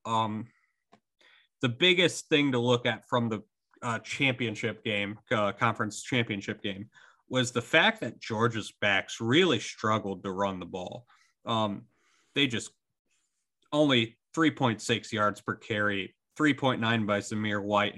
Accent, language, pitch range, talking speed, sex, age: American, English, 105-135 Hz, 135 wpm, male, 30-49